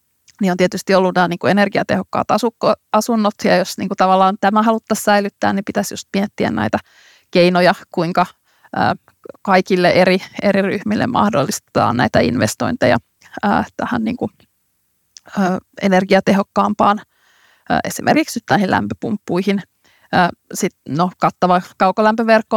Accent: native